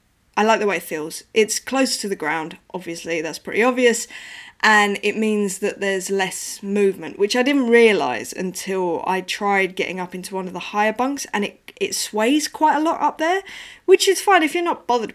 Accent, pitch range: British, 185-245 Hz